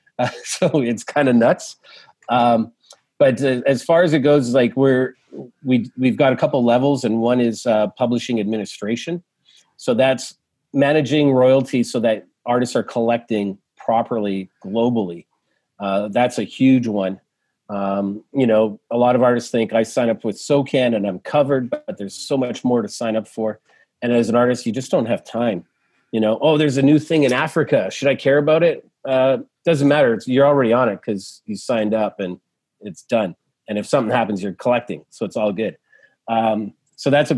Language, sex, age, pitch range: English, male, 40-59, 110-130 Hz